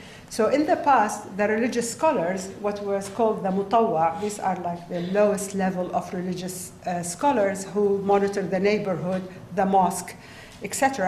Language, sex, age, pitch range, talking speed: English, female, 50-69, 195-240 Hz, 155 wpm